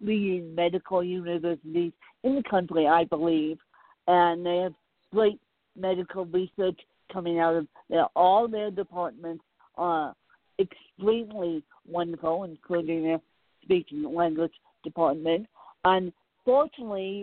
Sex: female